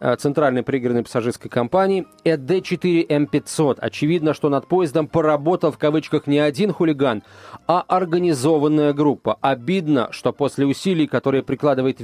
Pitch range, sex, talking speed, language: 125-175 Hz, male, 135 wpm, Russian